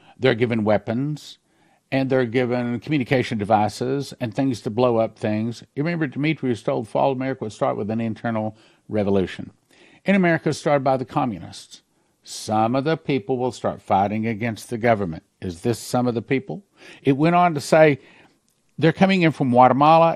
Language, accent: English, American